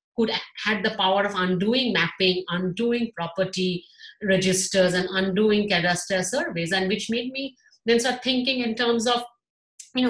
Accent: Indian